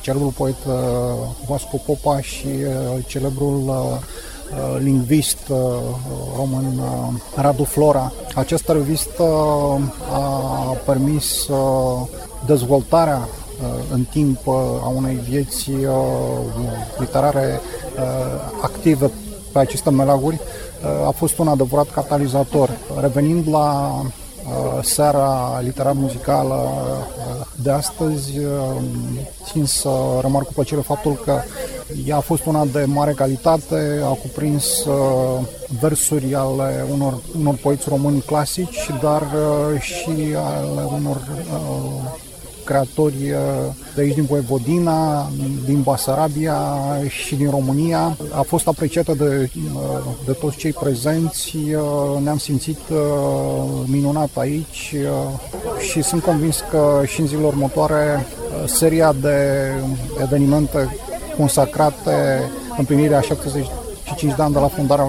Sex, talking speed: male, 95 wpm